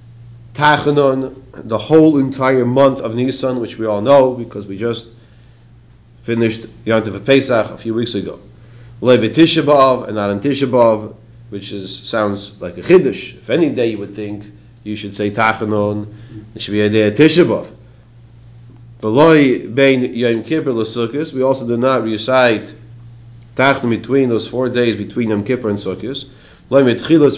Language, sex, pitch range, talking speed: English, male, 110-130 Hz, 150 wpm